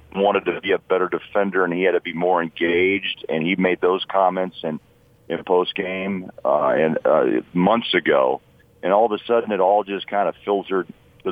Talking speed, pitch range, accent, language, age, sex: 205 wpm, 95-105 Hz, American, English, 40-59, male